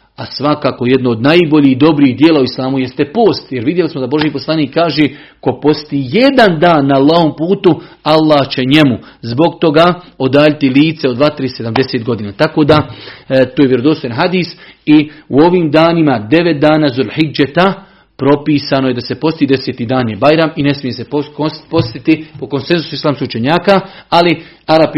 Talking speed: 180 wpm